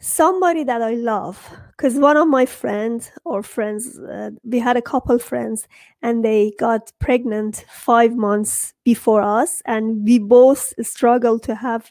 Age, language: 30-49, English